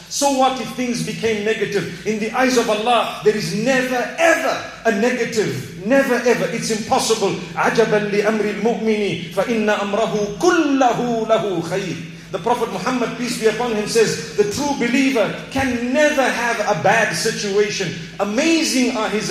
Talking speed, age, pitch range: 125 wpm, 40-59, 165-245 Hz